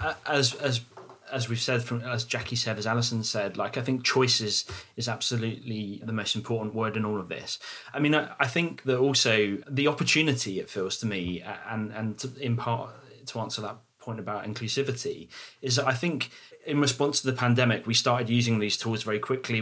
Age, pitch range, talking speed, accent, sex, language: 30-49, 110-130 Hz, 200 wpm, British, male, English